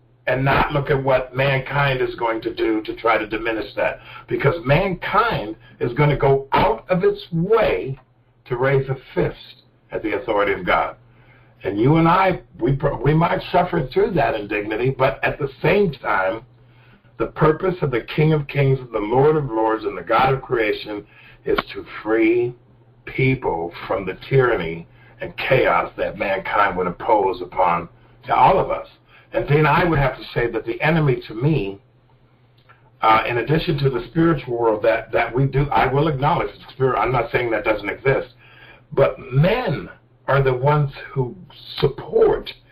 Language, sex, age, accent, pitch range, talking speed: English, male, 60-79, American, 125-160 Hz, 175 wpm